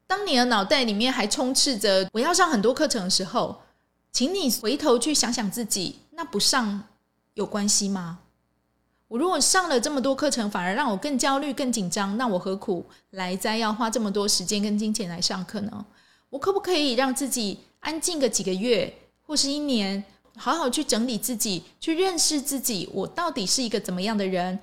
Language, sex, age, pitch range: Chinese, female, 20-39, 200-270 Hz